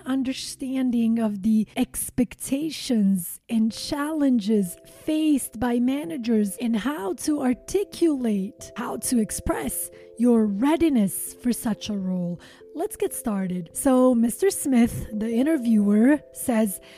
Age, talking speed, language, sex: 30-49, 110 wpm, English, female